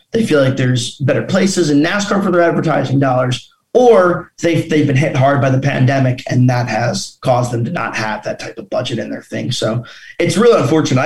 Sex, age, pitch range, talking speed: male, 20-39, 130-165 Hz, 215 wpm